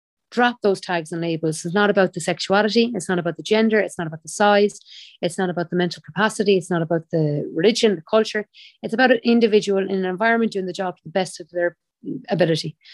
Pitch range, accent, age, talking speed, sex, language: 175-210 Hz, Irish, 30-49, 225 wpm, female, English